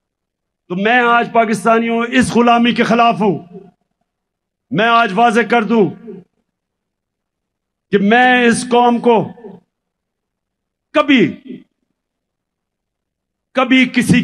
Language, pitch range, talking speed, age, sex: Hindi, 235-275 Hz, 90 wpm, 50-69, male